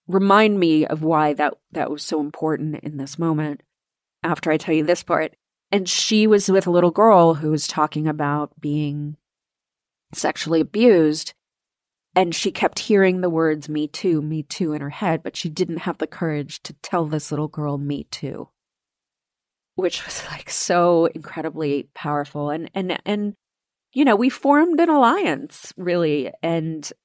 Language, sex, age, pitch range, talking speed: English, female, 30-49, 150-180 Hz, 165 wpm